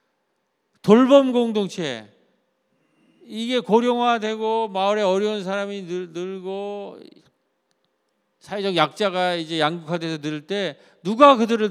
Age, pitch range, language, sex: 40-59, 165-230 Hz, Korean, male